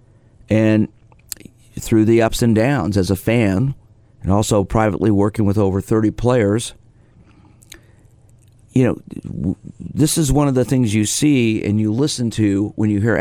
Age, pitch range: 50-69, 100-115 Hz